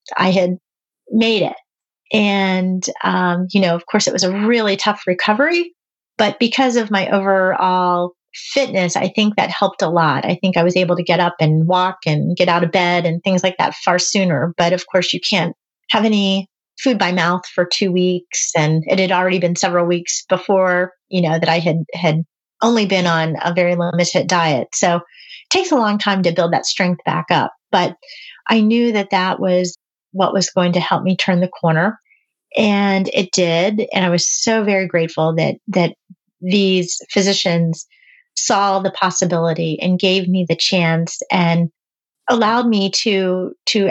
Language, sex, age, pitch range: English, female, 30-49, 175-205 Hz